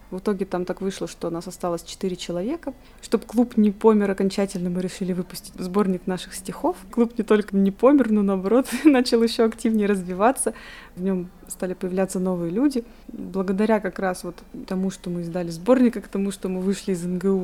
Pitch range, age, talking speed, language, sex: 185-230 Hz, 20-39, 190 wpm, Russian, female